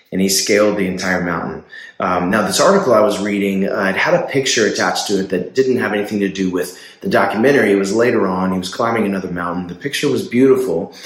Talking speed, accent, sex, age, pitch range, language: 235 wpm, American, male, 30-49, 95-110 Hz, English